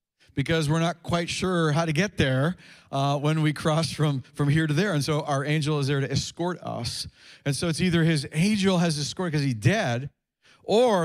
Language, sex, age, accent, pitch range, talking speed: English, male, 40-59, American, 145-185 Hz, 210 wpm